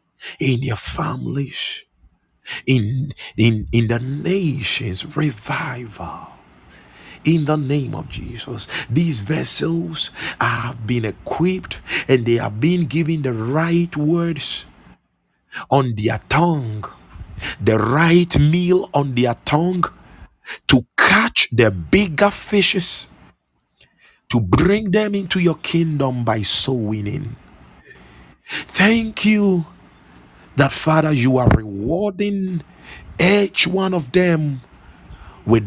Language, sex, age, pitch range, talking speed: English, male, 50-69, 105-160 Hz, 105 wpm